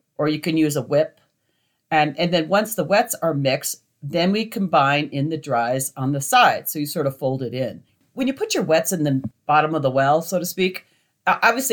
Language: English